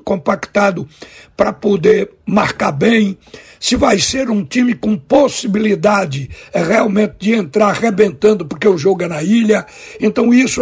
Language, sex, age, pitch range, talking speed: Portuguese, male, 60-79, 195-235 Hz, 135 wpm